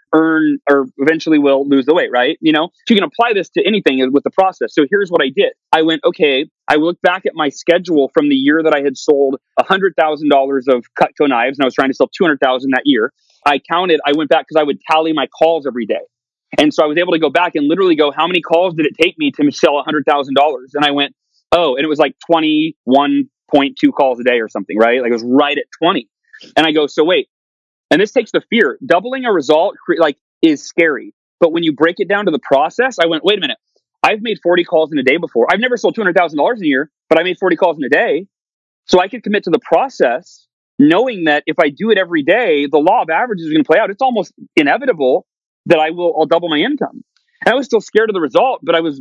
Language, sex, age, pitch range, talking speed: English, male, 30-49, 145-210 Hz, 250 wpm